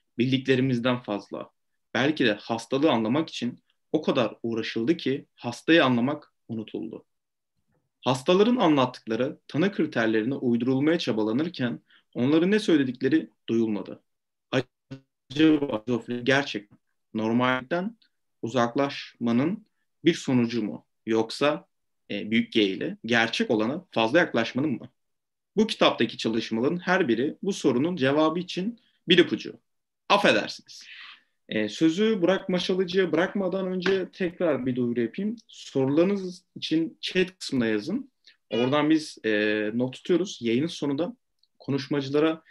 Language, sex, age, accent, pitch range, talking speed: Turkish, male, 30-49, native, 115-170 Hz, 110 wpm